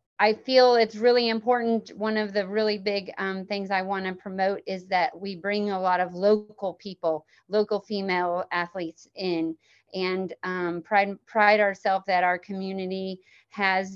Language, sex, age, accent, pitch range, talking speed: English, female, 30-49, American, 185-215 Hz, 160 wpm